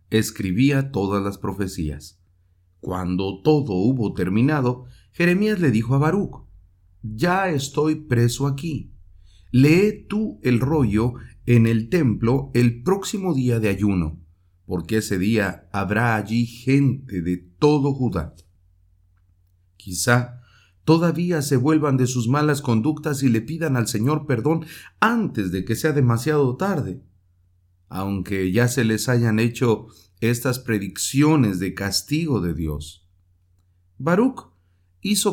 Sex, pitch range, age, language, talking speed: male, 90-140 Hz, 50-69, English, 120 wpm